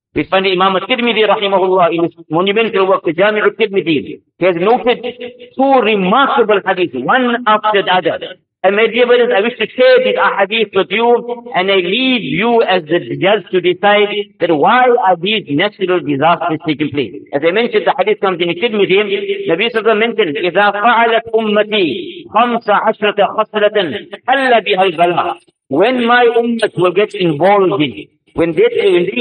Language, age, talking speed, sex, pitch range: English, 50-69, 150 wpm, male, 185-240 Hz